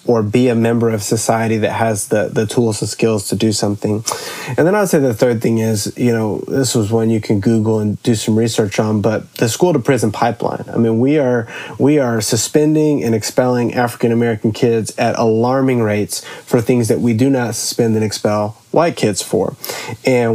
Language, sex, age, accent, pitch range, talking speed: English, male, 30-49, American, 110-125 Hz, 210 wpm